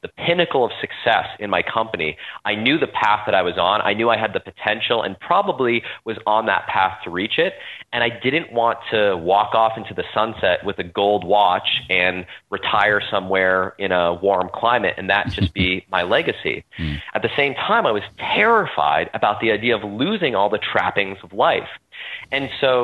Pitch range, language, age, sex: 95-115 Hz, English, 30-49, male